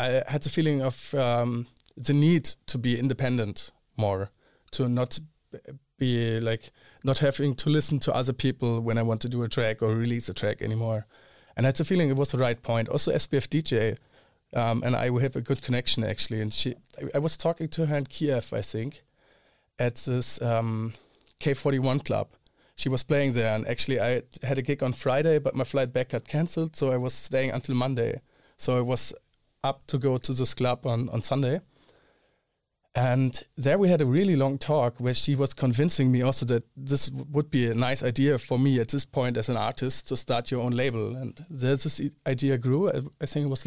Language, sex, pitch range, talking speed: English, male, 120-140 Hz, 210 wpm